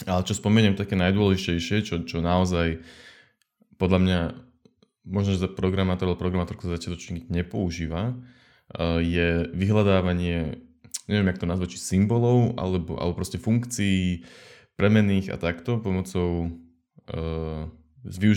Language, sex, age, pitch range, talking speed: Slovak, male, 20-39, 85-95 Hz, 110 wpm